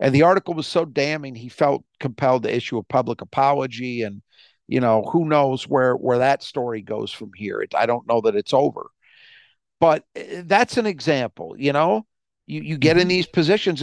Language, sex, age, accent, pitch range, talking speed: English, male, 50-69, American, 125-170 Hz, 195 wpm